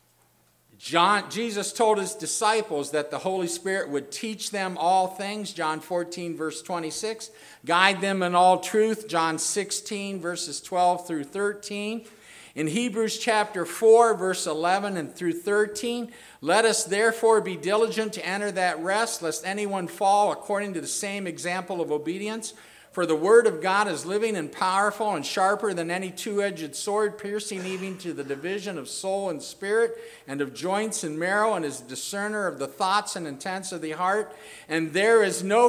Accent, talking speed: American, 170 wpm